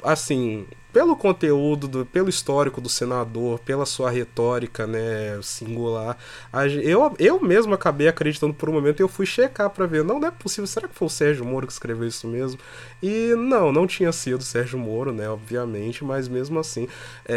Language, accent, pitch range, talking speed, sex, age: Portuguese, Brazilian, 120-160 Hz, 185 wpm, male, 20-39